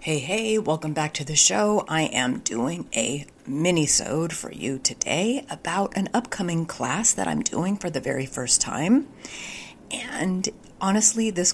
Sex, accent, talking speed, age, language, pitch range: female, American, 155 wpm, 50-69, English, 150-220 Hz